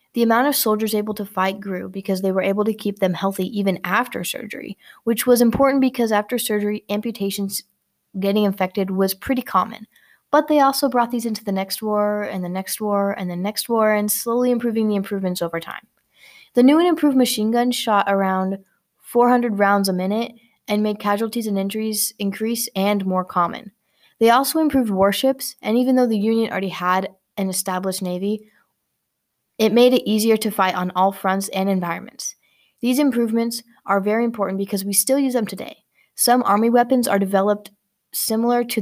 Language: English